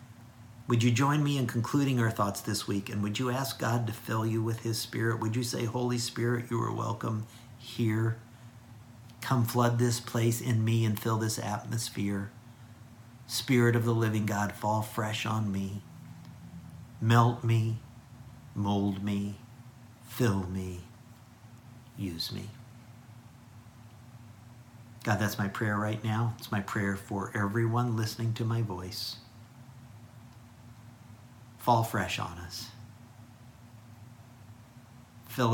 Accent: American